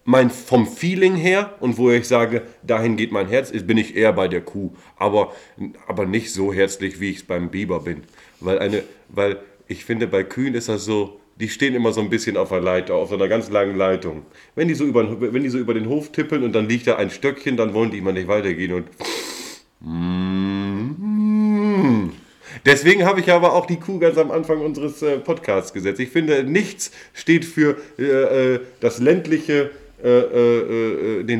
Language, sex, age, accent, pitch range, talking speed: German, male, 30-49, German, 100-135 Hz, 195 wpm